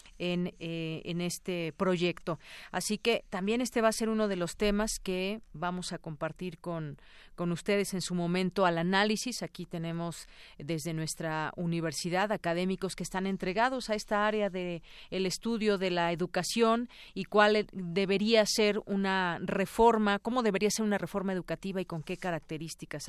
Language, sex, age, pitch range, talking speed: Spanish, female, 40-59, 170-205 Hz, 160 wpm